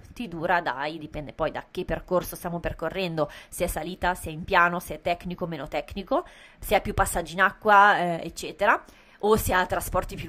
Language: Italian